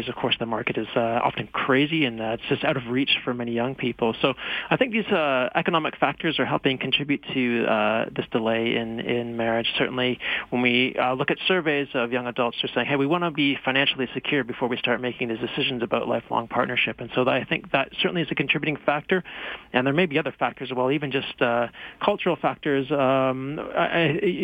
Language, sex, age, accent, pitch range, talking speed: English, male, 30-49, American, 120-140 Hz, 215 wpm